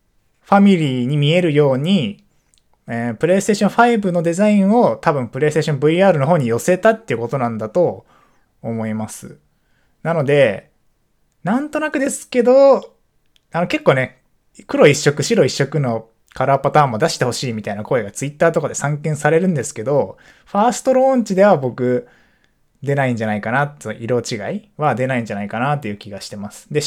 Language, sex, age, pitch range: Japanese, male, 20-39, 115-185 Hz